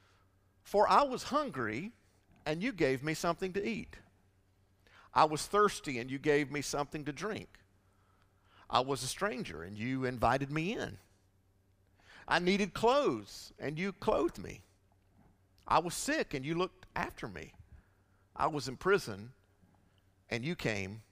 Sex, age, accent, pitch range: male, 50-69, American, 95-160 Hz